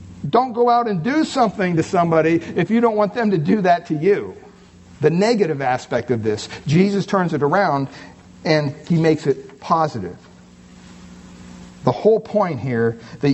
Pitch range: 125-185 Hz